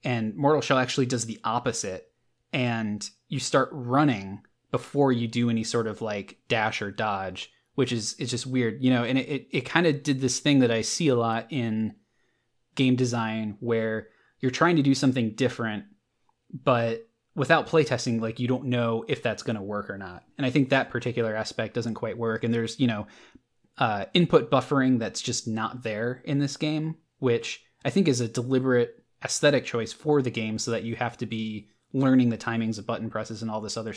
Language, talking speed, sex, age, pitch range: English, 205 wpm, male, 20-39, 110-130 Hz